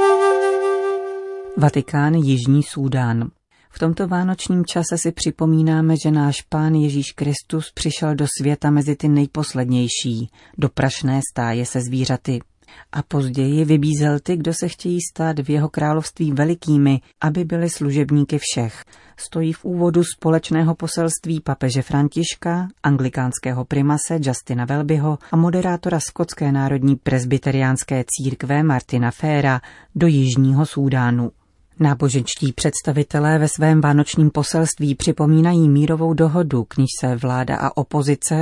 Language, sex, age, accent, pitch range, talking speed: Czech, female, 40-59, native, 135-165 Hz, 120 wpm